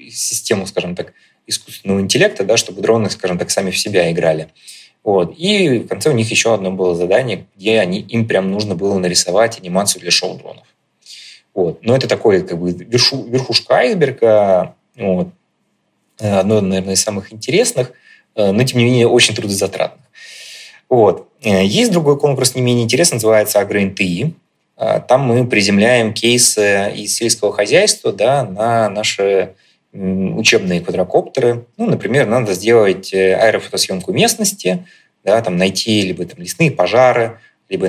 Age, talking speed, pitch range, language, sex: 20-39, 145 wpm, 95-125 Hz, Russian, male